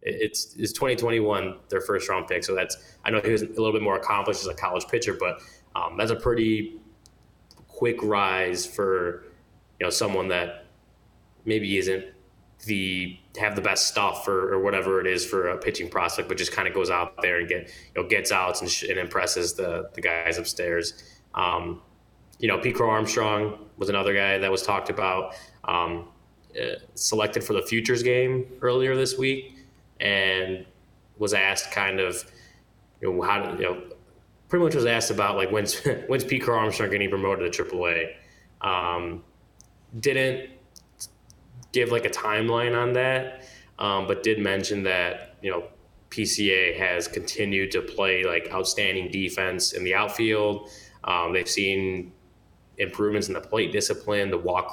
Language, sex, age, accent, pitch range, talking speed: English, male, 20-39, American, 95-110 Hz, 170 wpm